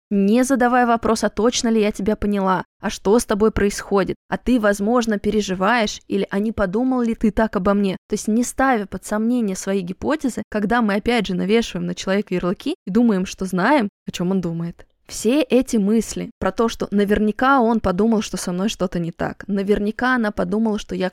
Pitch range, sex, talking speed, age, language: 185-220 Hz, female, 200 wpm, 20-39, Russian